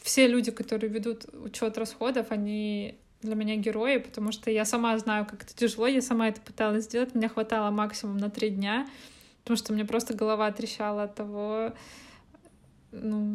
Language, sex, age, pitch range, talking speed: Russian, female, 20-39, 215-245 Hz, 175 wpm